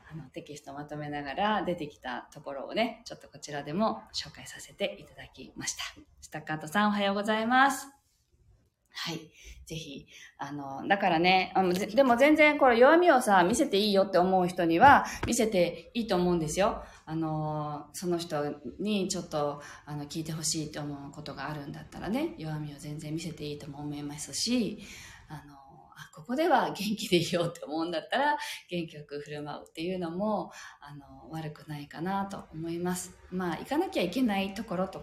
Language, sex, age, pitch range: Japanese, female, 20-39, 150-210 Hz